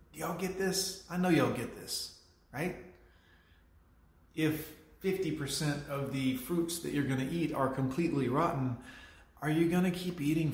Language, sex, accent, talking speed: English, male, American, 160 wpm